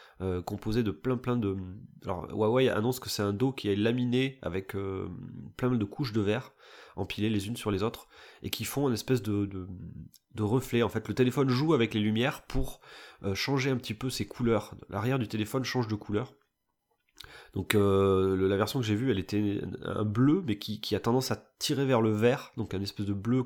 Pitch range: 100-125 Hz